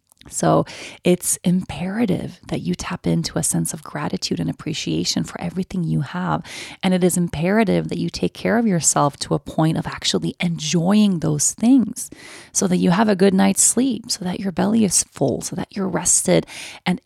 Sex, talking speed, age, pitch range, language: female, 190 wpm, 30-49, 155-190 Hz, English